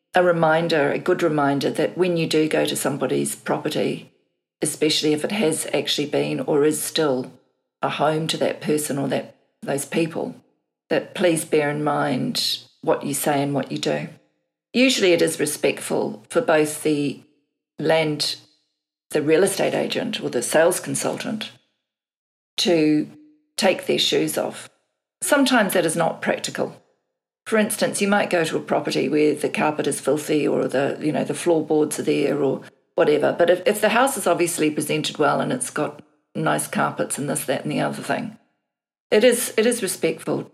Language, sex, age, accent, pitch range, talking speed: English, female, 40-59, Australian, 140-175 Hz, 175 wpm